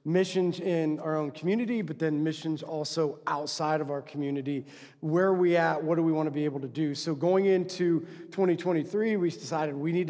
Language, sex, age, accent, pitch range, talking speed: English, male, 40-59, American, 155-185 Hz, 200 wpm